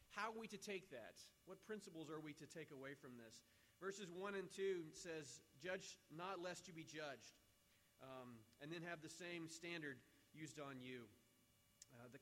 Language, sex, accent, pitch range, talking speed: English, male, American, 145-185 Hz, 185 wpm